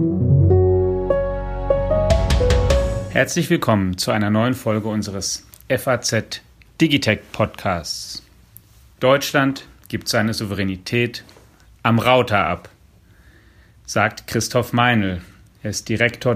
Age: 40-59